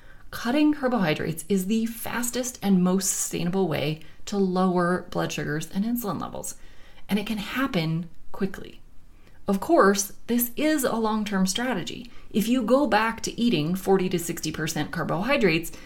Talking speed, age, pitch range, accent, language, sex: 140 wpm, 30-49, 165-230 Hz, American, English, female